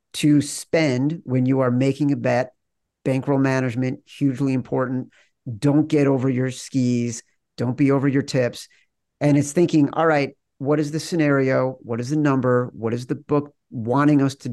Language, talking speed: English, 175 wpm